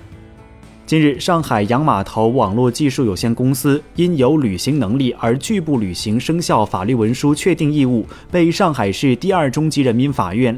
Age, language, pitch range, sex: 30-49, Chinese, 110-150 Hz, male